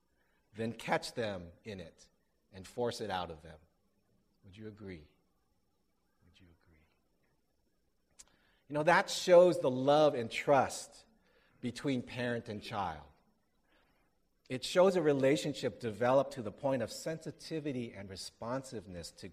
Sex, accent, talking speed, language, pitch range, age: male, American, 130 wpm, English, 105-150 Hz, 50-69